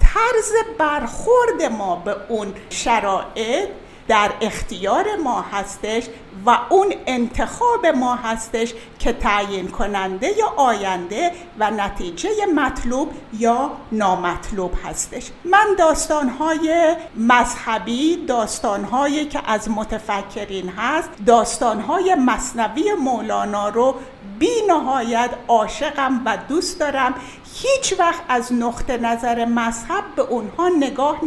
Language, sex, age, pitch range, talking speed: Persian, female, 60-79, 230-320 Hz, 100 wpm